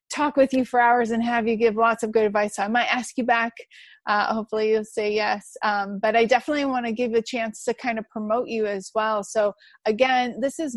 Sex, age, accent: female, 30-49, American